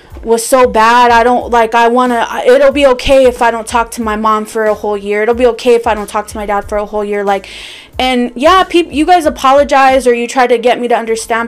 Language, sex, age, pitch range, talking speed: English, female, 20-39, 220-250 Hz, 270 wpm